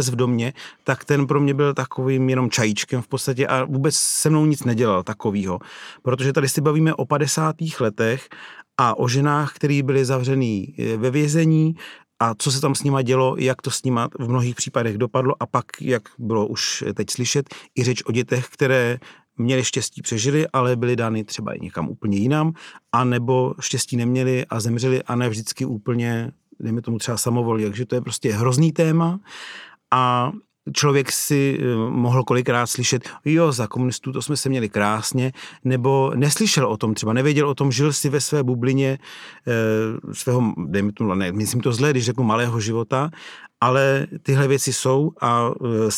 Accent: native